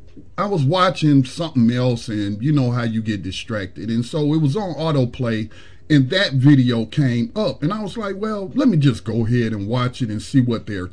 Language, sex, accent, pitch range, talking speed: English, male, American, 115-170 Hz, 220 wpm